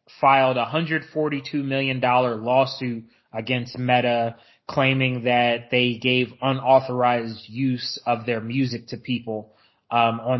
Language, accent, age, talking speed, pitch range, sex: English, American, 20-39, 115 wpm, 125-140 Hz, male